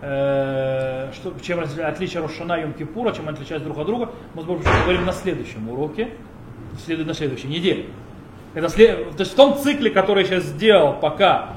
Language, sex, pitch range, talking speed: Russian, male, 145-205 Hz, 150 wpm